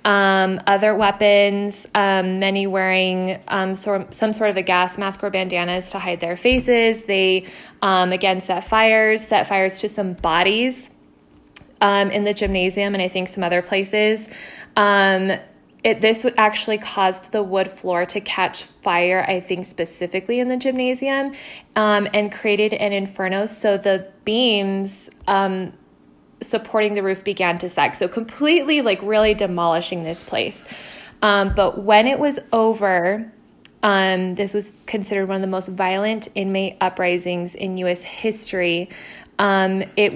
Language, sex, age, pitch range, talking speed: English, female, 20-39, 185-215 Hz, 150 wpm